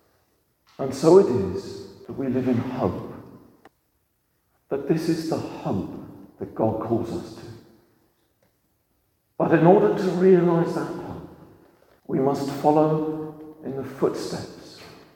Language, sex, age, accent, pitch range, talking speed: English, male, 50-69, British, 105-145 Hz, 125 wpm